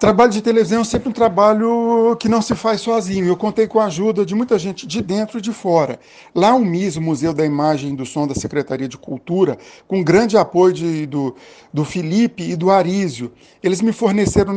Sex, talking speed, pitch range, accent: male, 210 wpm, 175-220 Hz, Brazilian